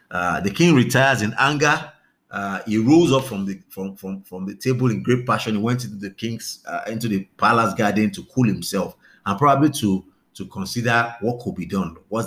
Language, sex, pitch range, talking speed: English, male, 100-130 Hz, 210 wpm